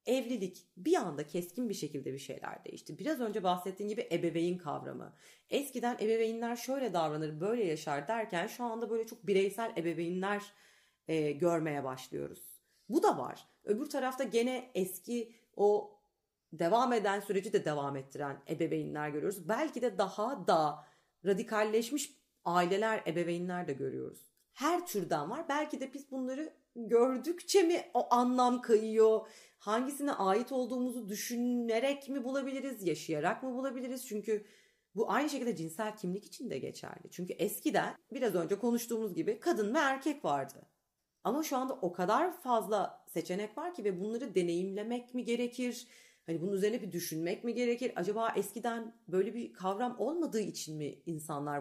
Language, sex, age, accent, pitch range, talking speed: Turkish, female, 30-49, native, 180-250 Hz, 145 wpm